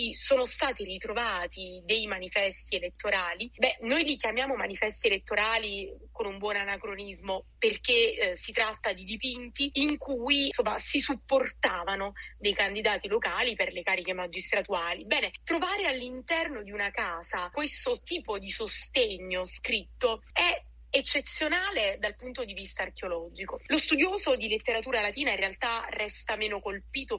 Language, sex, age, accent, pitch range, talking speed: Italian, female, 30-49, native, 205-305 Hz, 135 wpm